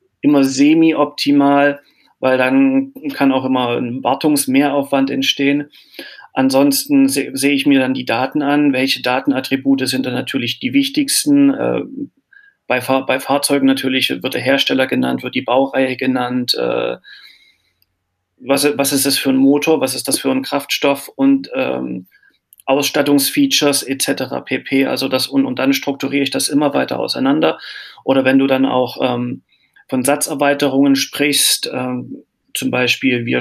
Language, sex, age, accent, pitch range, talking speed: German, male, 40-59, German, 130-160 Hz, 145 wpm